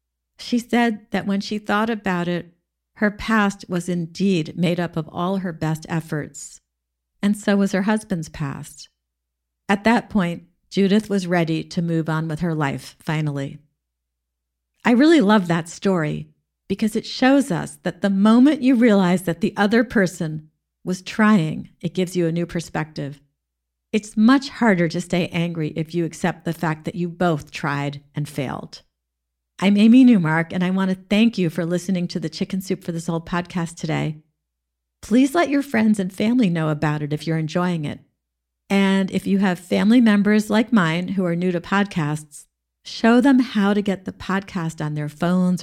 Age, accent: 50-69, American